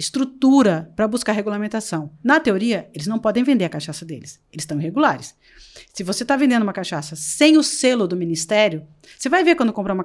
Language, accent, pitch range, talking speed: Portuguese, Brazilian, 205-300 Hz, 195 wpm